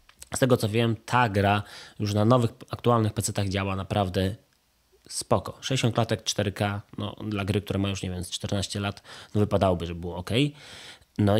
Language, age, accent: Polish, 20-39, native